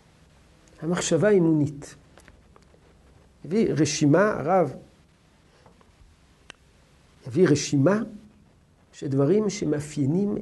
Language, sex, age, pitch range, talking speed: Hebrew, male, 50-69, 140-235 Hz, 60 wpm